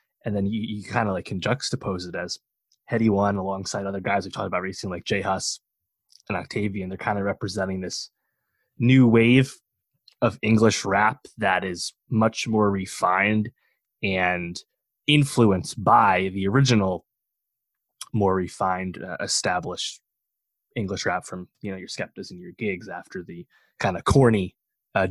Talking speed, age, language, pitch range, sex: 155 wpm, 20-39, English, 95-115 Hz, male